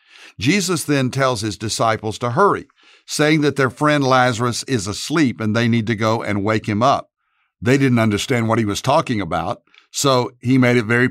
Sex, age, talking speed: male, 60-79, 195 wpm